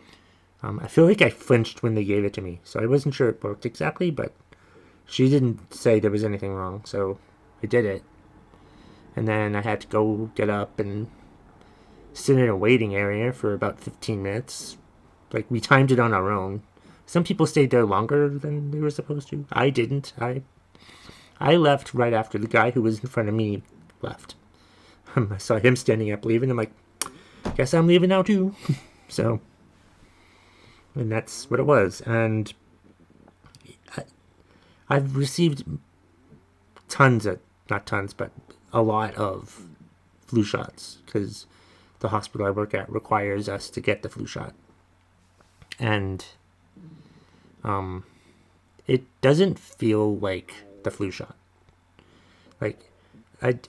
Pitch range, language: 95-125 Hz, English